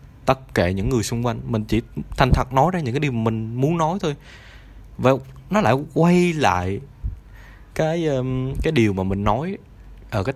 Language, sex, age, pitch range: Vietnamese, male, 20-39, 100-130 Hz